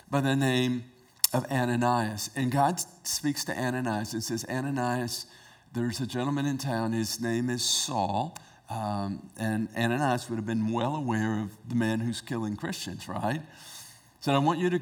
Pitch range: 110-130 Hz